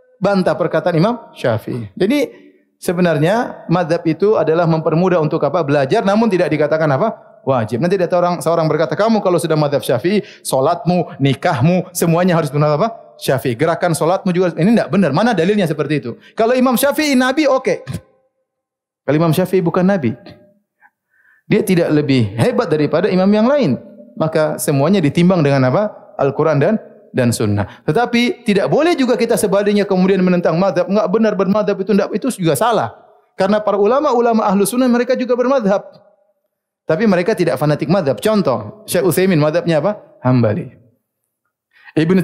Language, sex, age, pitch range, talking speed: Indonesian, male, 30-49, 155-210 Hz, 160 wpm